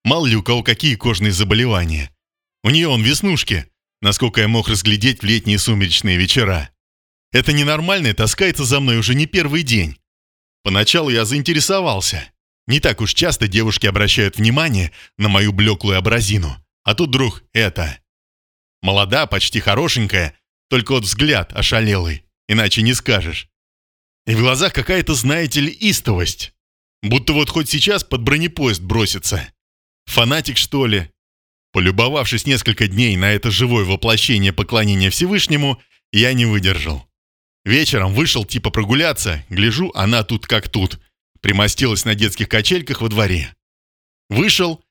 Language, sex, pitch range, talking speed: Russian, male, 95-130 Hz, 135 wpm